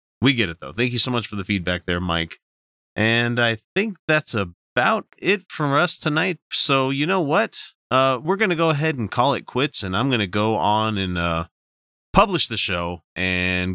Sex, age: male, 30-49